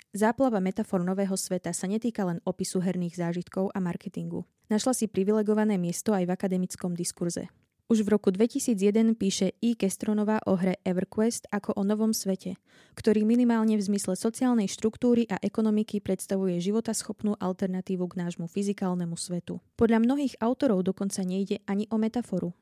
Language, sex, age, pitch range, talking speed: Slovak, female, 20-39, 185-220 Hz, 150 wpm